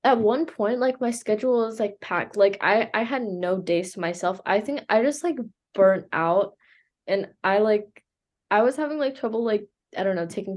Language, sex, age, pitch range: English, female, 10-29, 175-210 Hz